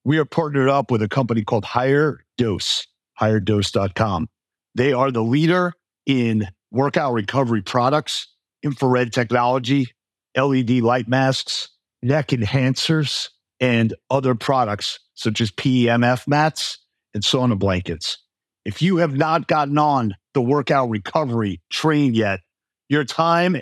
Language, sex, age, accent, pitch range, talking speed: English, male, 50-69, American, 115-140 Hz, 125 wpm